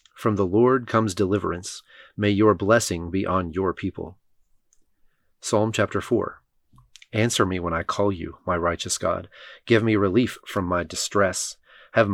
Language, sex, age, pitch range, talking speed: English, male, 30-49, 95-110 Hz, 155 wpm